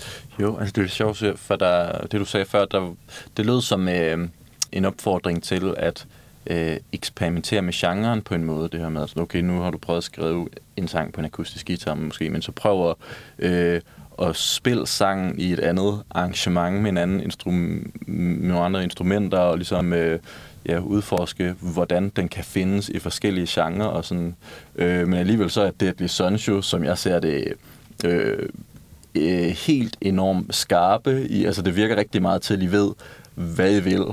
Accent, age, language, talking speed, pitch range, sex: native, 30-49, Danish, 190 wpm, 85-100 Hz, male